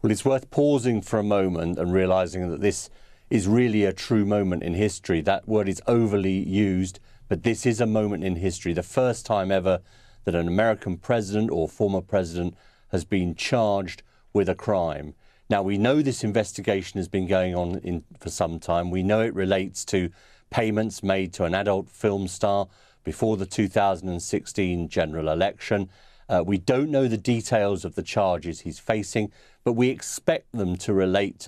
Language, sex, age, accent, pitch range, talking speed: English, male, 40-59, British, 95-110 Hz, 175 wpm